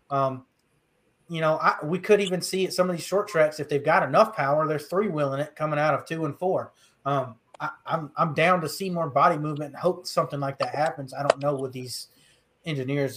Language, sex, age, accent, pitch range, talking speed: English, male, 30-49, American, 140-180 Hz, 235 wpm